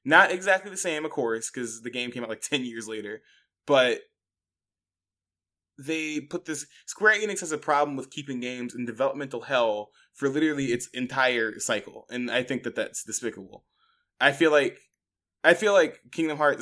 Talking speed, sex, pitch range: 175 wpm, male, 115-145 Hz